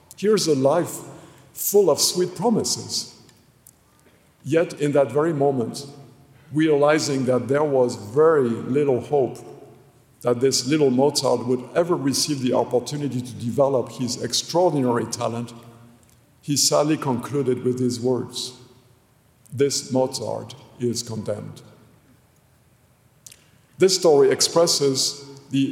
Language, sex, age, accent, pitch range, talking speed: English, male, 50-69, French, 125-150 Hz, 110 wpm